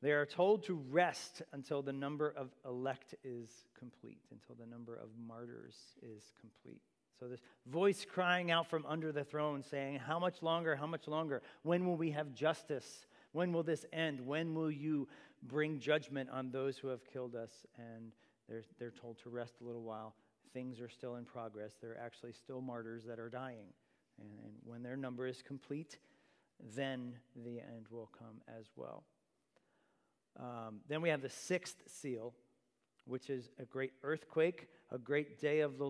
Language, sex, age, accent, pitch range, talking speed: English, male, 40-59, American, 125-155 Hz, 180 wpm